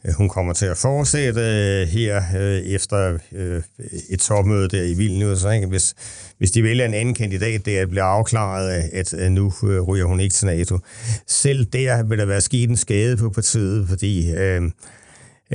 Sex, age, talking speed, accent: male, 60-79, 190 wpm, native